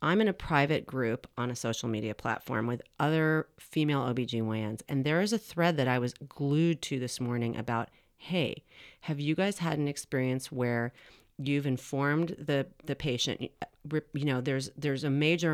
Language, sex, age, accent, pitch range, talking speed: English, female, 40-59, American, 125-155 Hz, 180 wpm